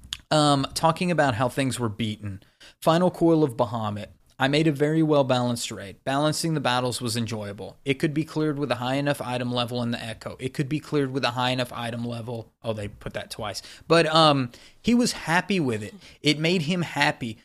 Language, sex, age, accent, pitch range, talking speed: English, male, 30-49, American, 120-155 Hz, 210 wpm